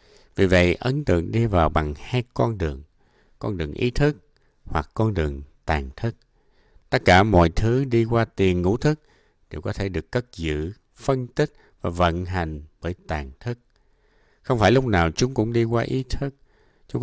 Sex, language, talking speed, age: male, Vietnamese, 185 wpm, 60-79